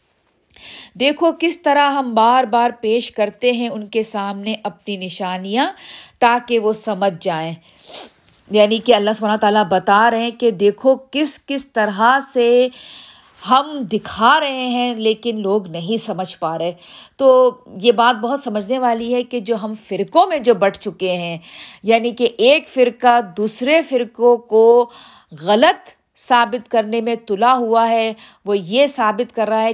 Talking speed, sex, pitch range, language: 155 wpm, female, 205-250 Hz, Urdu